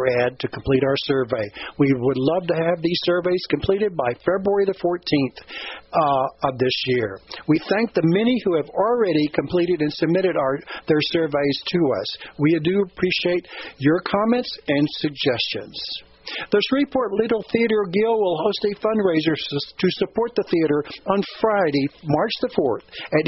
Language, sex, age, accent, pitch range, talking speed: English, male, 60-79, American, 145-195 Hz, 155 wpm